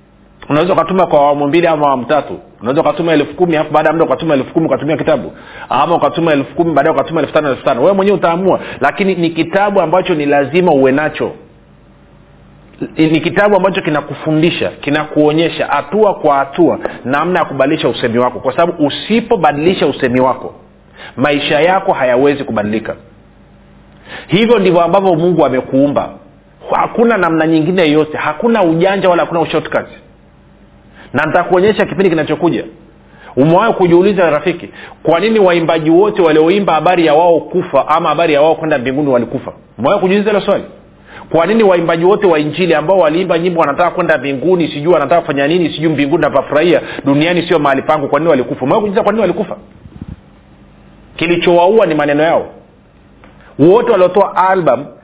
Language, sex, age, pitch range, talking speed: Swahili, male, 40-59, 150-185 Hz, 145 wpm